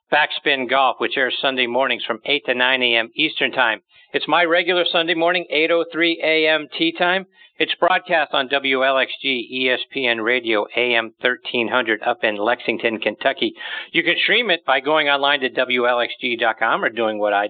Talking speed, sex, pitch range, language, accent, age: 160 wpm, male, 115-150 Hz, English, American, 50-69